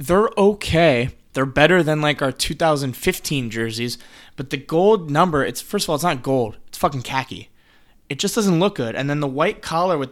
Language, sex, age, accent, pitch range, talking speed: English, male, 20-39, American, 125-170 Hz, 200 wpm